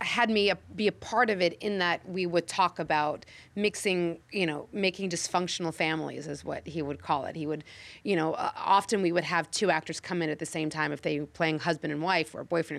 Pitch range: 160-195 Hz